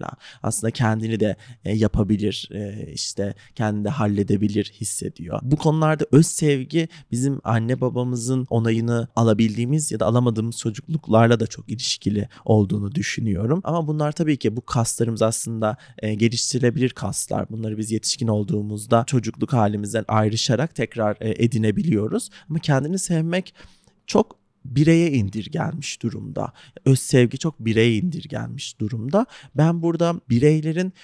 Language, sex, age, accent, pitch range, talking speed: Turkish, male, 30-49, native, 110-150 Hz, 120 wpm